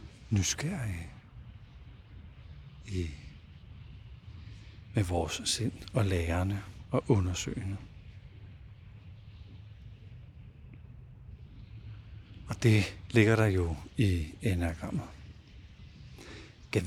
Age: 60-79